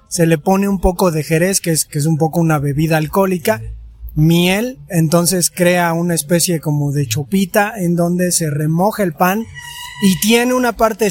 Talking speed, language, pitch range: 185 wpm, Spanish, 165-205 Hz